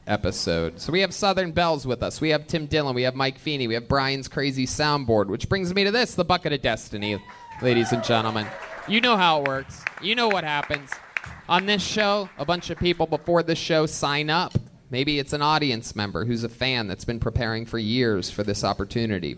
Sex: male